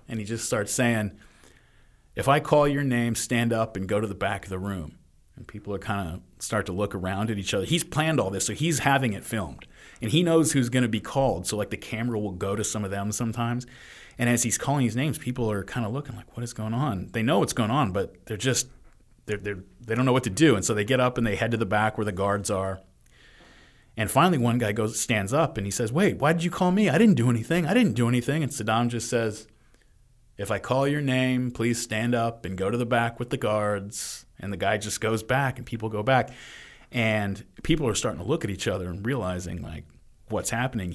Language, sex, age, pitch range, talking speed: English, male, 30-49, 100-125 Hz, 255 wpm